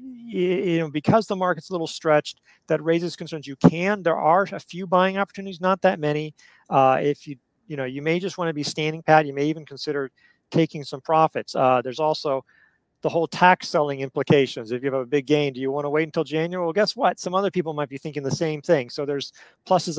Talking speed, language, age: 235 wpm, English, 40-59